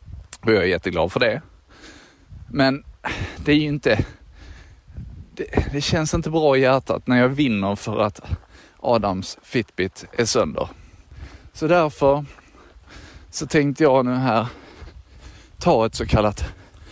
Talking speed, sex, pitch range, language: 135 wpm, male, 90-145 Hz, Swedish